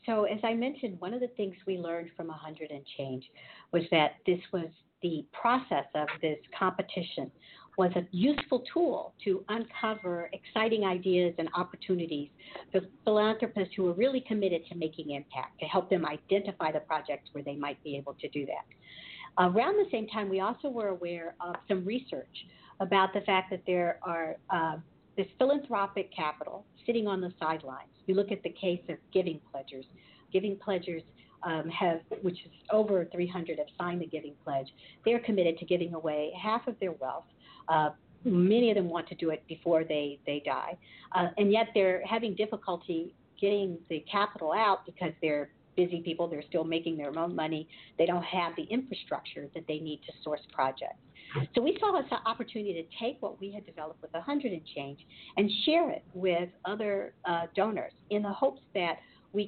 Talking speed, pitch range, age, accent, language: 180 wpm, 165-210 Hz, 50-69, American, English